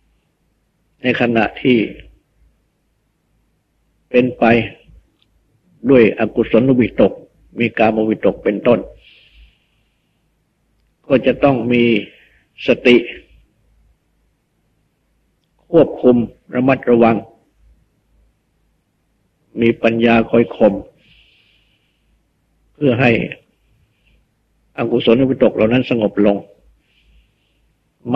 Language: Thai